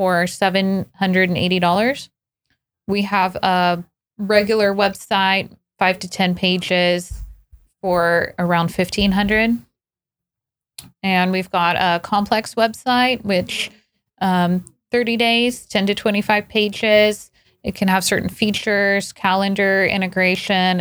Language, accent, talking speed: English, American, 100 wpm